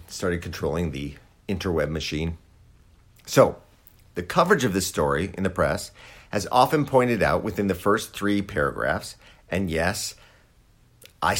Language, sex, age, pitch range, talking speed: English, male, 50-69, 85-115 Hz, 135 wpm